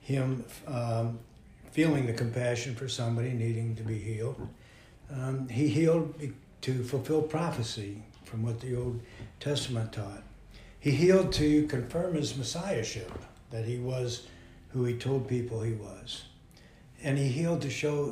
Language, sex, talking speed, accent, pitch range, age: English, male, 140 wpm, American, 115-135 Hz, 60-79